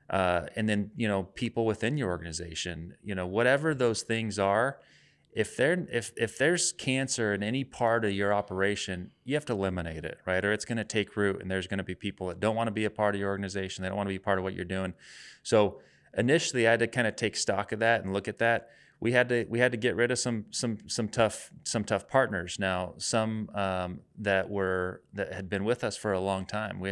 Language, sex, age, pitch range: English, male, 30-49, 95-115 Hz